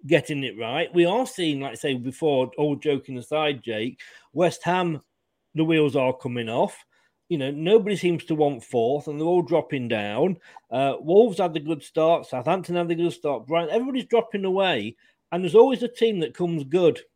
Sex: male